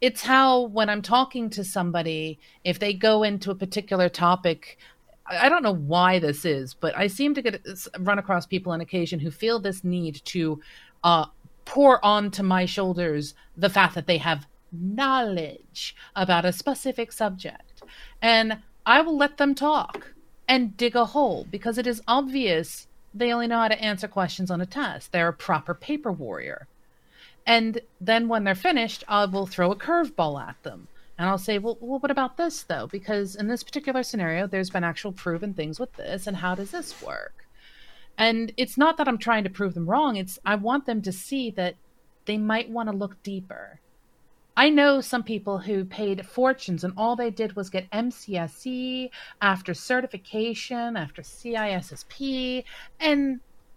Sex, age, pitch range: female, 40-59, 185-250 Hz